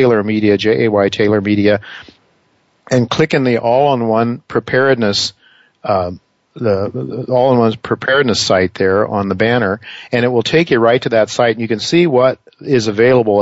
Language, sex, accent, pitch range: English, male, American, 110-130 Hz